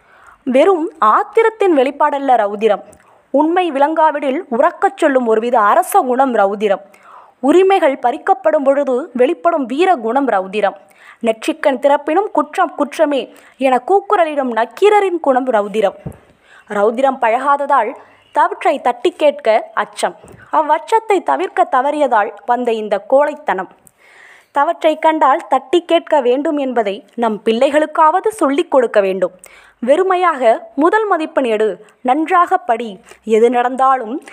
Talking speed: 105 wpm